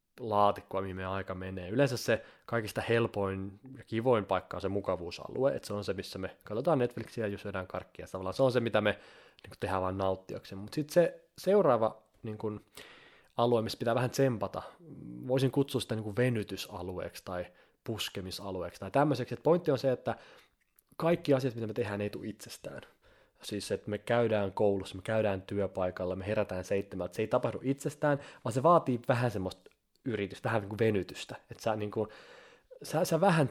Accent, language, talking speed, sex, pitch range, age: native, Finnish, 180 wpm, male, 100-125 Hz, 20-39